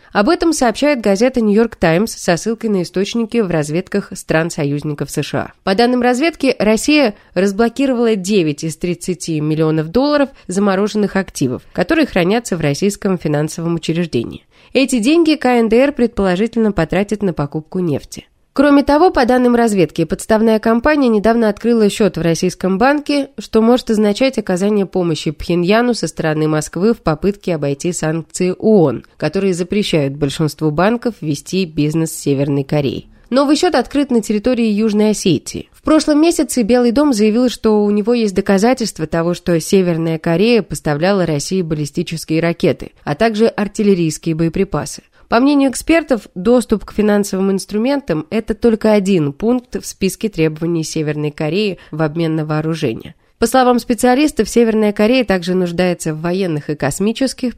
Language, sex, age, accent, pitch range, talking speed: Russian, female, 20-39, native, 165-240 Hz, 145 wpm